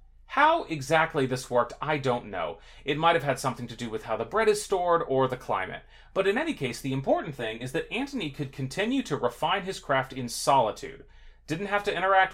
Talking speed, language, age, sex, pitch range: 220 wpm, English, 30-49, male, 120-170 Hz